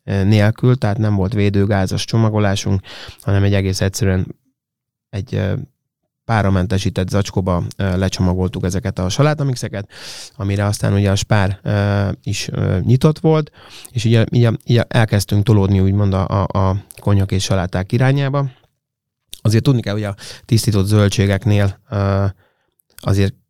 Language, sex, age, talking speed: Hungarian, male, 20-39, 115 wpm